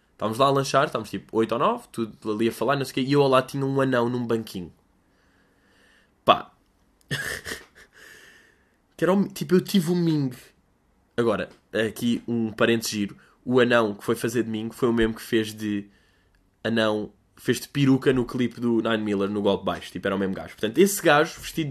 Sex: male